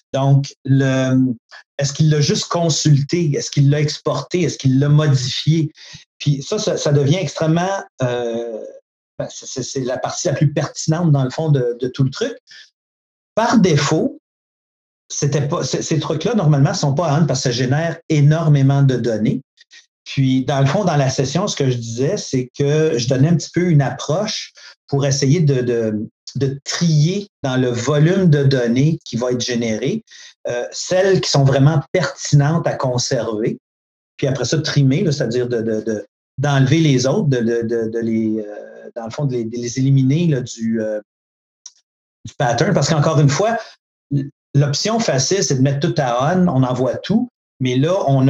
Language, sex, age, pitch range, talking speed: French, male, 50-69, 130-160 Hz, 180 wpm